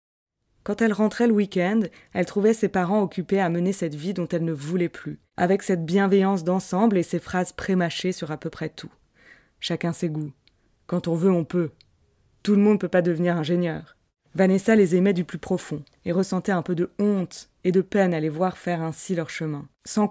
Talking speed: 210 wpm